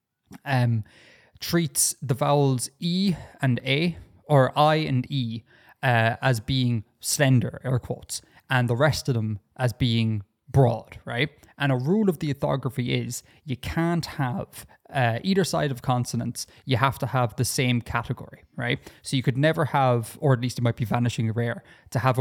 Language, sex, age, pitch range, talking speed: English, male, 20-39, 120-140 Hz, 175 wpm